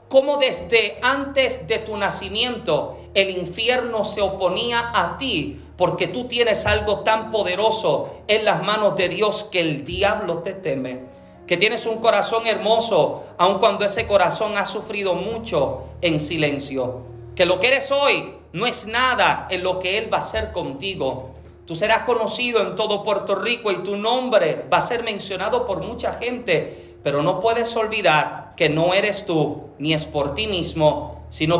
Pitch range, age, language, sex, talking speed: 175-230 Hz, 40-59, Spanish, male, 170 wpm